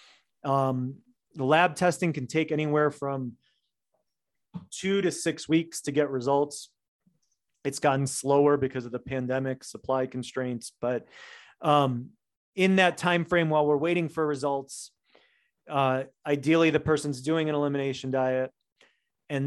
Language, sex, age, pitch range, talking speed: English, male, 30-49, 140-170 Hz, 135 wpm